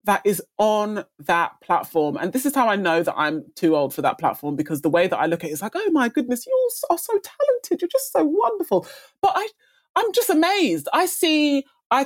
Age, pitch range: 20-39, 185-300 Hz